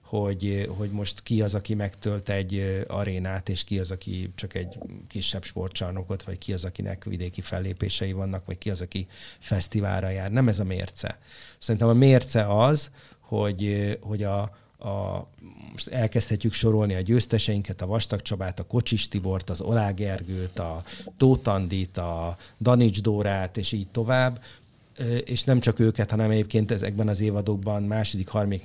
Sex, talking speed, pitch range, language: male, 150 wpm, 95-115 Hz, Hungarian